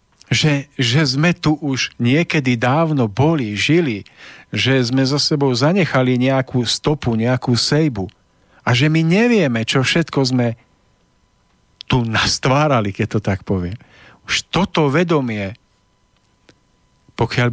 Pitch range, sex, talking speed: 115-155 Hz, male, 120 wpm